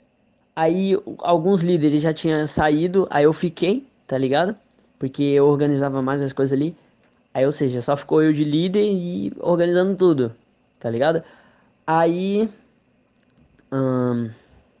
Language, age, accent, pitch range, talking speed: Portuguese, 10-29, Brazilian, 135-185 Hz, 135 wpm